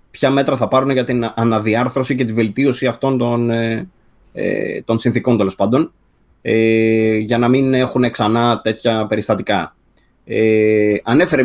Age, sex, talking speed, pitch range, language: 20-39, male, 125 wpm, 110-125 Hz, Greek